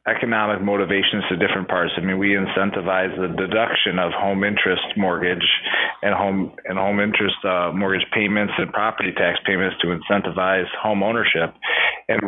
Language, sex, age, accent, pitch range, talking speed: English, male, 30-49, American, 95-110 Hz, 155 wpm